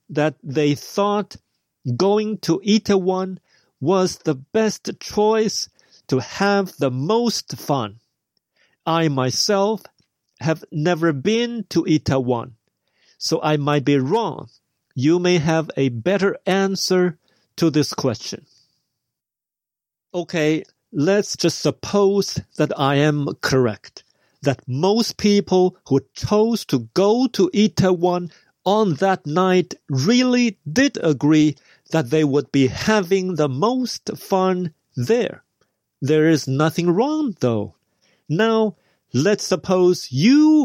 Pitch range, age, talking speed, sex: 145-200 Hz, 50-69, 115 wpm, male